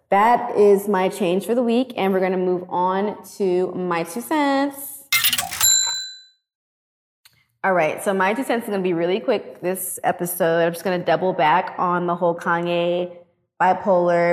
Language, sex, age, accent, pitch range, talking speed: English, female, 20-39, American, 175-200 Hz, 175 wpm